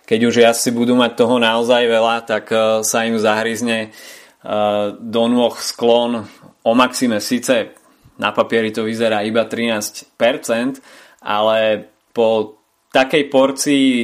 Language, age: Slovak, 20-39